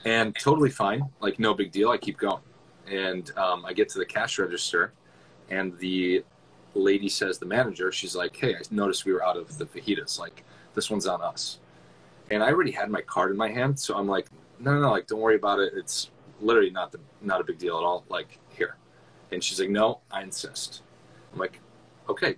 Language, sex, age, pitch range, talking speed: English, male, 30-49, 95-130 Hz, 215 wpm